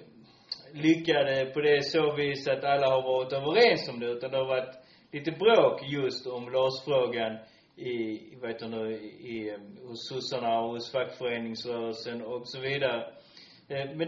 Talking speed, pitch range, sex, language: 135 wpm, 125-165 Hz, male, Swedish